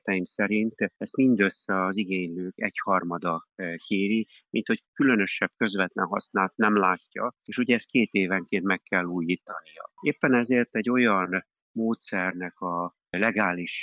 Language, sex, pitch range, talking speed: Hungarian, male, 90-105 Hz, 125 wpm